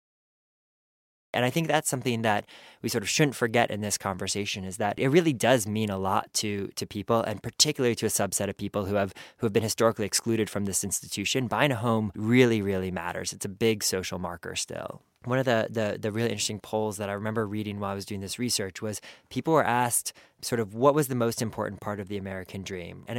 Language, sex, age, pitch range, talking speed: English, male, 20-39, 100-120 Hz, 230 wpm